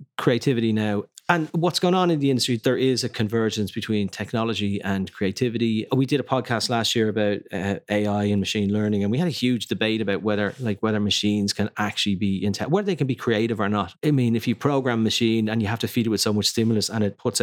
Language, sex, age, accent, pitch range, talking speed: English, male, 30-49, Irish, 105-130 Hz, 245 wpm